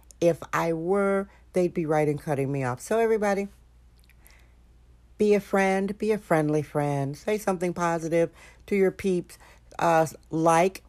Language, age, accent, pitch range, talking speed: English, 60-79, American, 155-200 Hz, 150 wpm